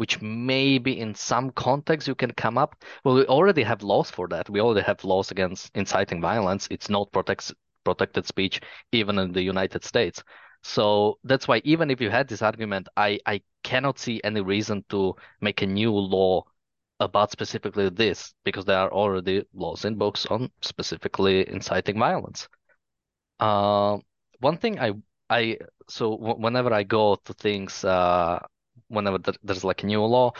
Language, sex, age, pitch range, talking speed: English, male, 20-39, 95-115 Hz, 170 wpm